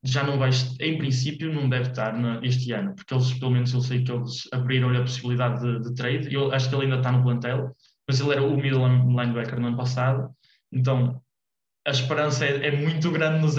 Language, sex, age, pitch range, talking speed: English, male, 20-39, 125-145 Hz, 220 wpm